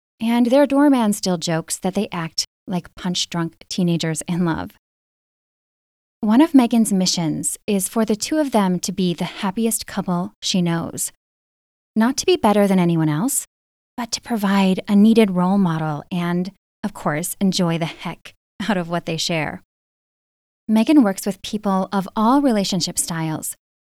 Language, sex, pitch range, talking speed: English, female, 170-220 Hz, 160 wpm